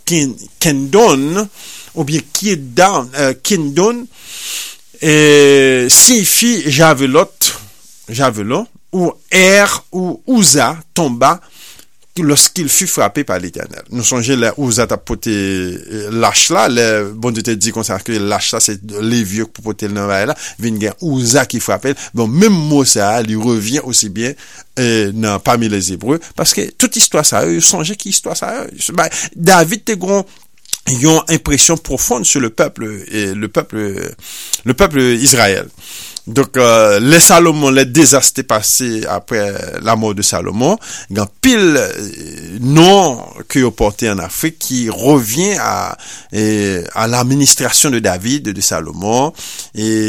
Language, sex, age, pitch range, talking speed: French, male, 50-69, 110-160 Hz, 135 wpm